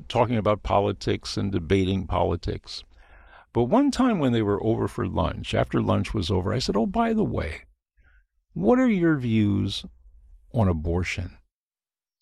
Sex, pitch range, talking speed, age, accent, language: male, 90-150 Hz, 150 wpm, 50-69, American, English